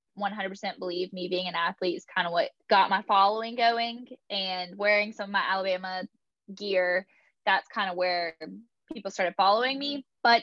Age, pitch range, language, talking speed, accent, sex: 10-29, 185-230 Hz, English, 165 wpm, American, female